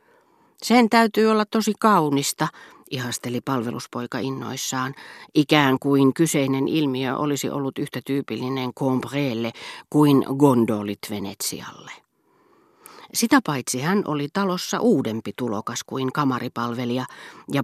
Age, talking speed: 40-59, 100 wpm